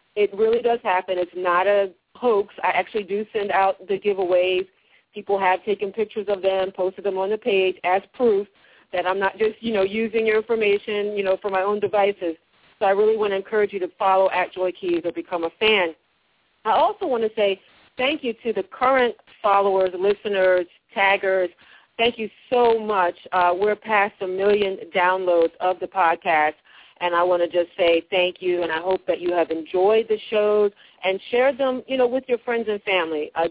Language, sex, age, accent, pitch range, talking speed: English, female, 40-59, American, 185-235 Hz, 200 wpm